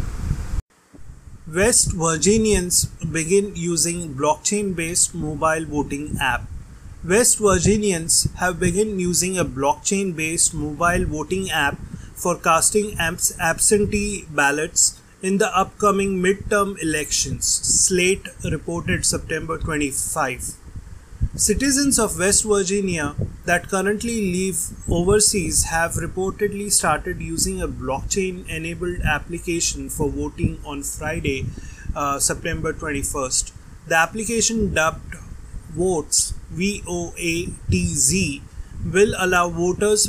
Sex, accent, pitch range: male, Indian, 150-200 Hz